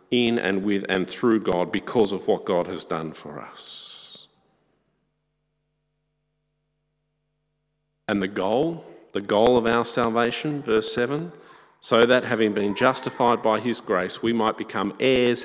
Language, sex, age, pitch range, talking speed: English, male, 50-69, 110-150 Hz, 140 wpm